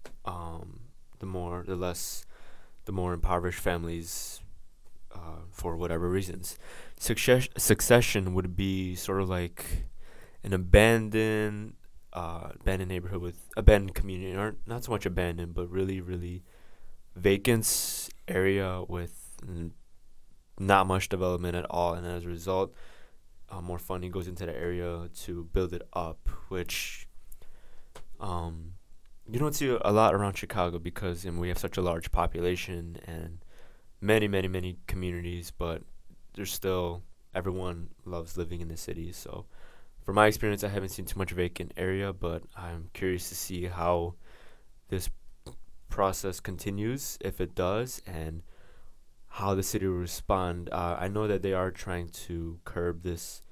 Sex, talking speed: male, 145 wpm